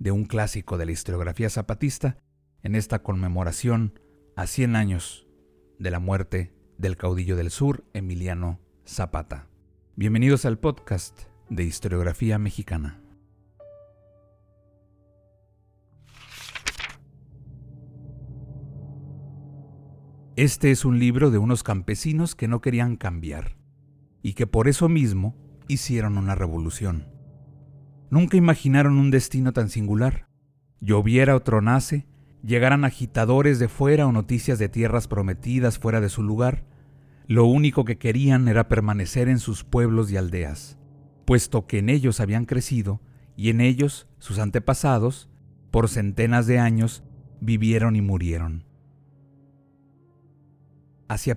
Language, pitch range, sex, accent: Spanish, 100-135 Hz, male, Mexican